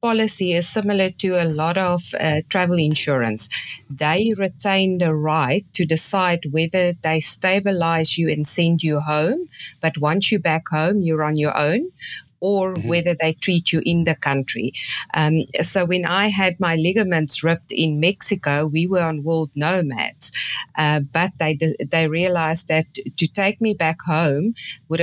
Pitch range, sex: 155-180 Hz, female